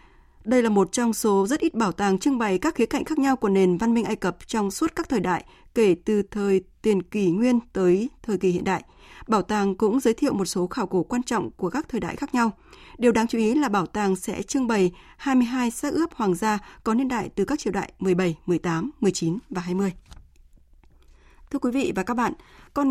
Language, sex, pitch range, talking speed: Vietnamese, female, 190-240 Hz, 235 wpm